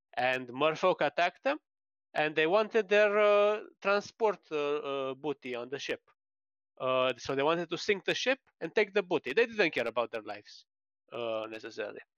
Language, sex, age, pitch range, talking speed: English, male, 30-49, 125-185 Hz, 175 wpm